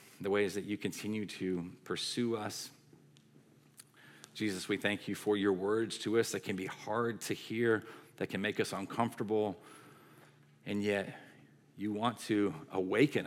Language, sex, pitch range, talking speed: English, male, 90-105 Hz, 155 wpm